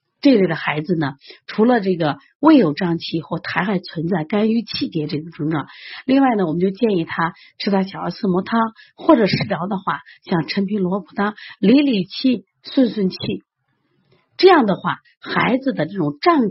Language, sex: Chinese, female